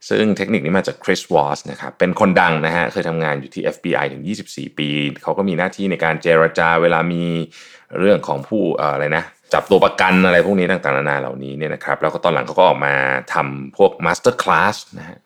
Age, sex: 20-39, male